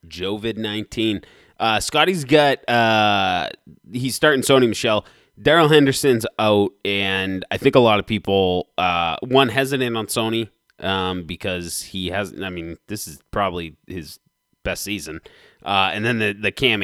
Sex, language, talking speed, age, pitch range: male, English, 150 wpm, 20-39, 90-115 Hz